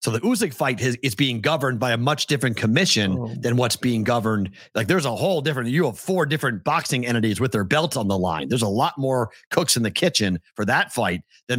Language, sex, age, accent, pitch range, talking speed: English, male, 40-59, American, 110-145 Hz, 240 wpm